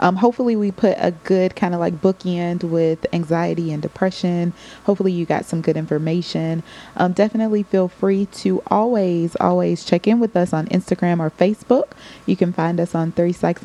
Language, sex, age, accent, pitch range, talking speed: English, female, 20-39, American, 175-205 Hz, 185 wpm